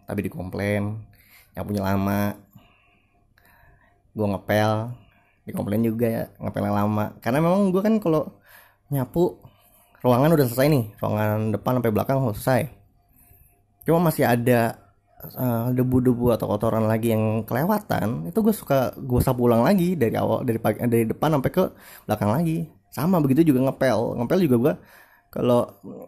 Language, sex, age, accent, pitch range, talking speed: Indonesian, male, 20-39, native, 105-140 Hz, 145 wpm